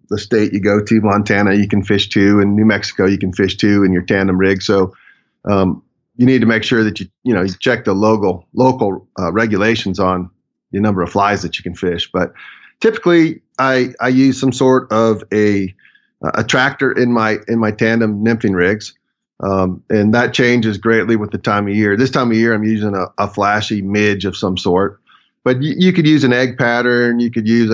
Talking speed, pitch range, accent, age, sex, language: 215 wpm, 100-120 Hz, American, 30-49, male, English